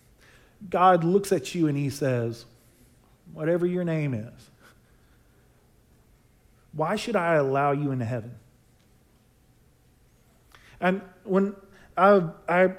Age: 40-59